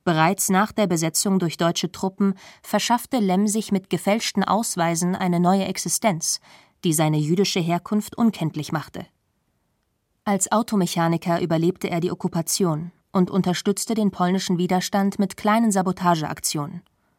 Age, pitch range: 20-39, 175-205 Hz